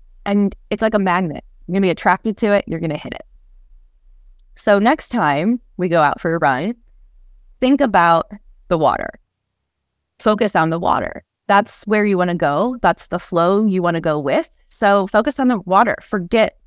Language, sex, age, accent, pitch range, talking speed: English, female, 20-39, American, 170-215 Hz, 195 wpm